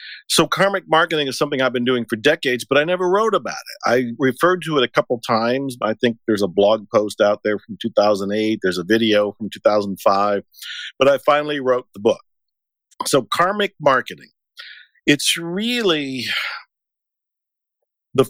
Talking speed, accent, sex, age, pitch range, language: 165 wpm, American, male, 50-69, 115-140 Hz, English